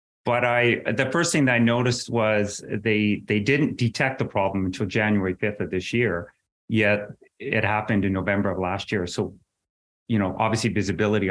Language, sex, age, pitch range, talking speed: English, male, 30-49, 100-115 Hz, 180 wpm